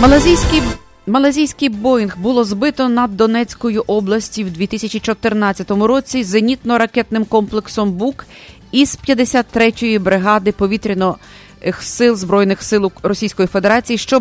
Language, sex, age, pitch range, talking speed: English, female, 30-49, 185-225 Hz, 100 wpm